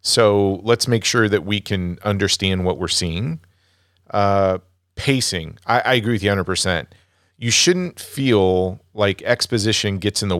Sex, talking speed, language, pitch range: male, 160 wpm, English, 95-110 Hz